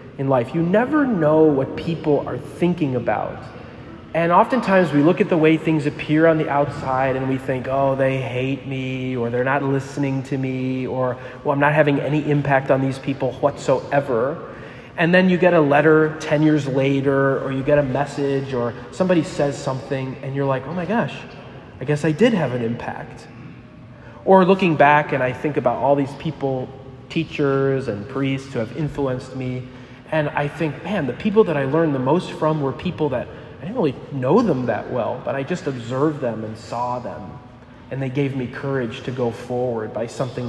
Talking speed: 195 wpm